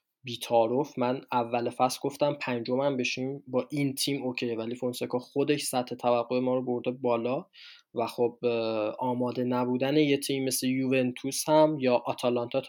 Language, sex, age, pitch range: Persian, male, 20-39, 120-140 Hz